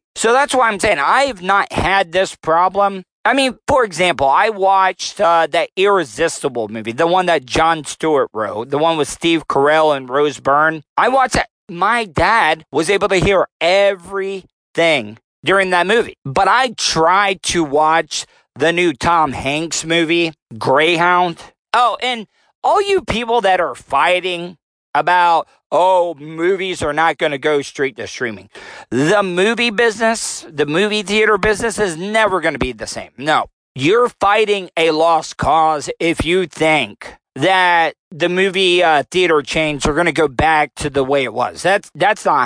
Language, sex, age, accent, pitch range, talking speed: English, male, 40-59, American, 155-195 Hz, 170 wpm